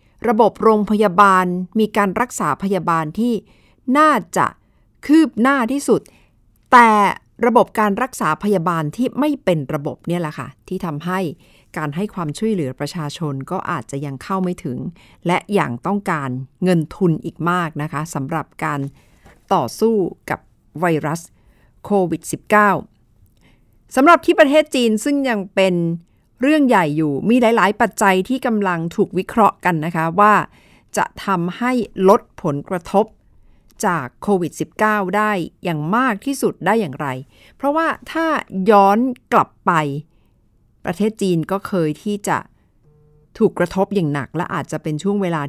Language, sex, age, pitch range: Thai, female, 60-79, 155-210 Hz